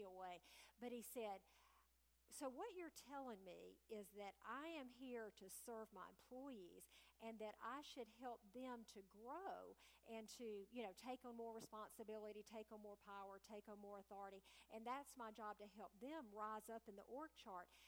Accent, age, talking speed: American, 50-69, 185 wpm